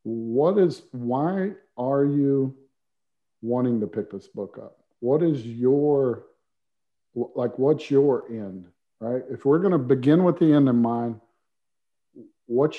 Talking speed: 140 wpm